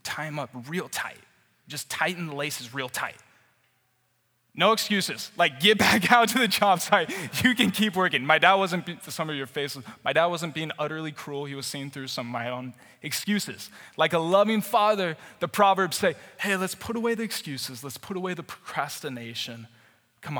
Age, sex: 20-39, male